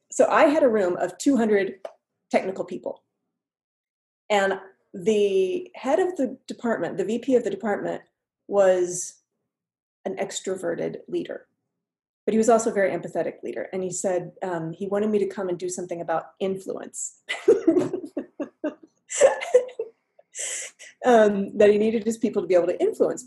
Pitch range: 185-260 Hz